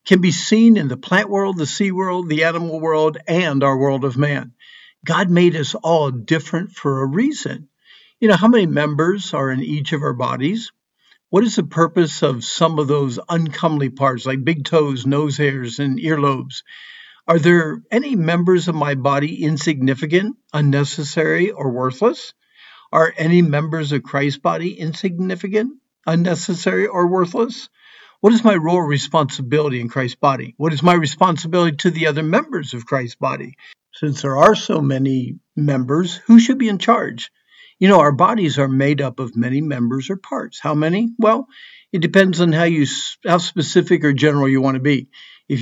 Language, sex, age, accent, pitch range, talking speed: English, male, 50-69, American, 140-185 Hz, 180 wpm